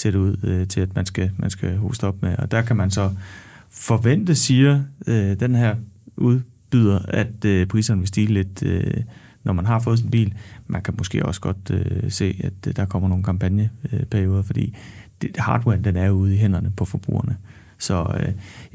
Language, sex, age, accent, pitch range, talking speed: Danish, male, 30-49, native, 95-115 Hz, 190 wpm